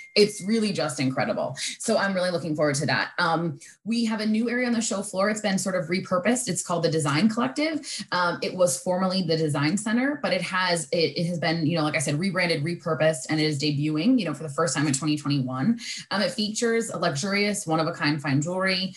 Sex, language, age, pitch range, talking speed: female, English, 20-39, 155-205 Hz, 235 wpm